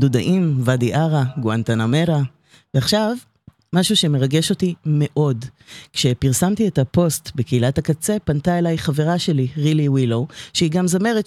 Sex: female